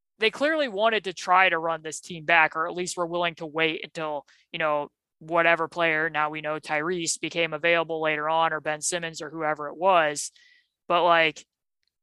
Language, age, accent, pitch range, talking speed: English, 20-39, American, 155-190 Hz, 195 wpm